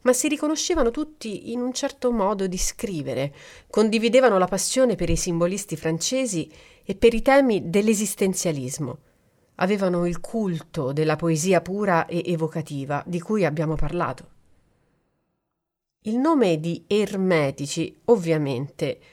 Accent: native